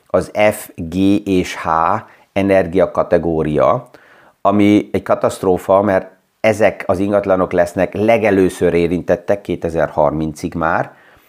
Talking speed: 95 wpm